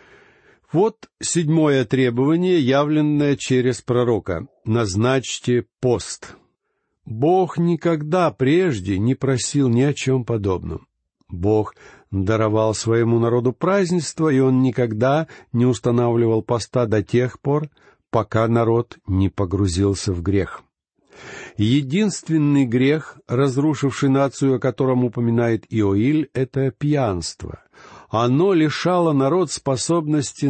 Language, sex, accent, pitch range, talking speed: Russian, male, native, 115-150 Hz, 100 wpm